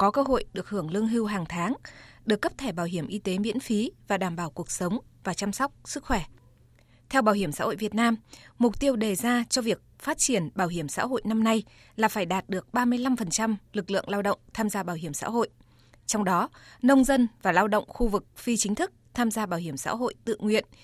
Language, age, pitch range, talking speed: Vietnamese, 20-39, 185-235 Hz, 240 wpm